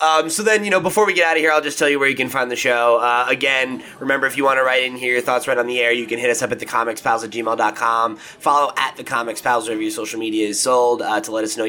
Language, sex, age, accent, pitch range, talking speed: English, male, 20-39, American, 110-135 Hz, 320 wpm